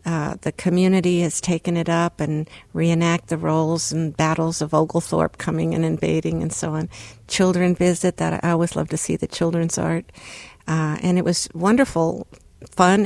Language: English